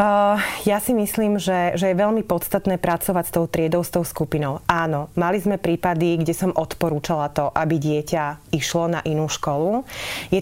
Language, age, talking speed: Slovak, 30-49, 175 wpm